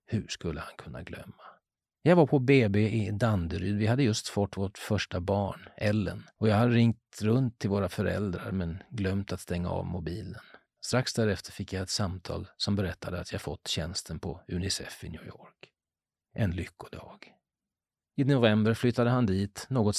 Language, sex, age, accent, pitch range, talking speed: Swedish, male, 40-59, native, 90-115 Hz, 175 wpm